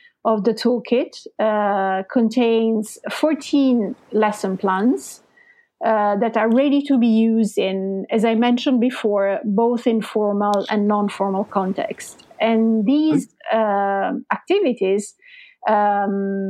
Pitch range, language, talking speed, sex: 205-255 Hz, English, 115 wpm, female